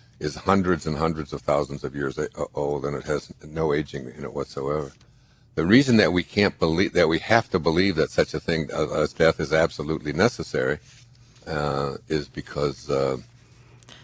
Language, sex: English, male